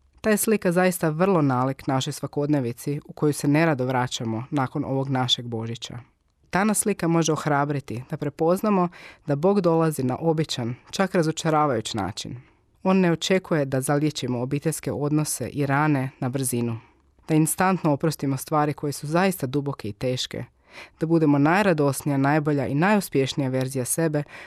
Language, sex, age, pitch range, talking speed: Croatian, female, 20-39, 130-160 Hz, 145 wpm